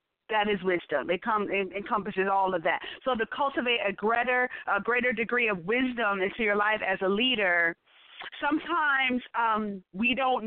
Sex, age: female, 40-59